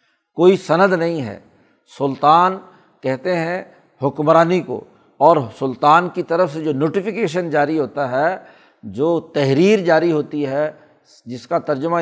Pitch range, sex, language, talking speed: 150-170 Hz, male, Urdu, 135 wpm